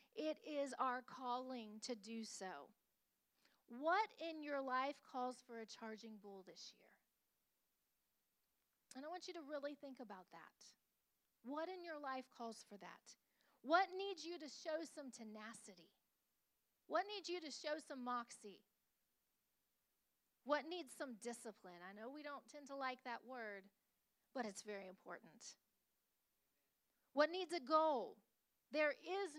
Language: English